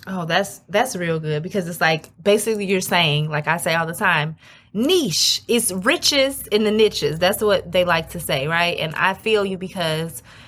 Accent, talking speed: American, 200 wpm